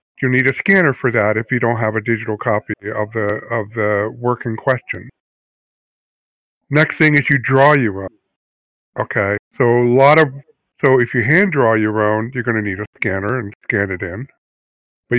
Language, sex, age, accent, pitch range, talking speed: English, male, 60-79, American, 115-145 Hz, 200 wpm